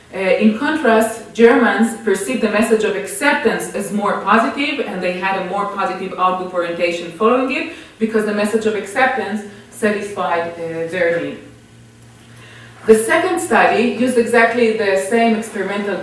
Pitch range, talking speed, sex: 190-230 Hz, 145 wpm, female